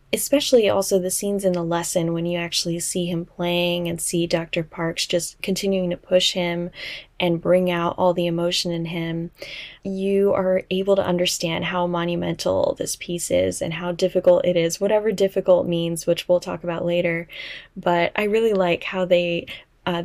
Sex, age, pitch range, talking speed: female, 20-39, 170-190 Hz, 180 wpm